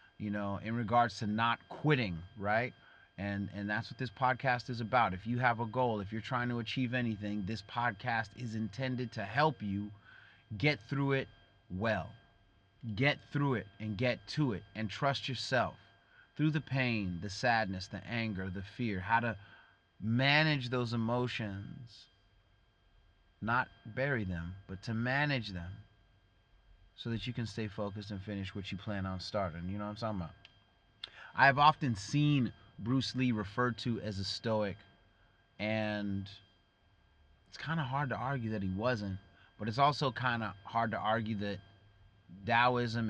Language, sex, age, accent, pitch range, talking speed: English, male, 30-49, American, 100-125 Hz, 165 wpm